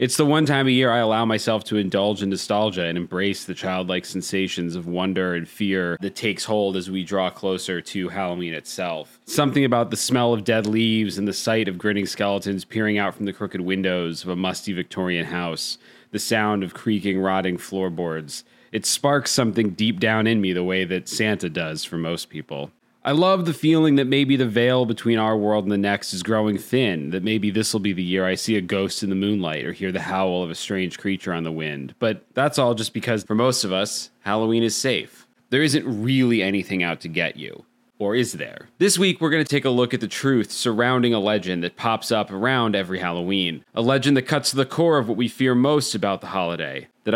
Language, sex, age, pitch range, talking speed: English, male, 30-49, 95-120 Hz, 225 wpm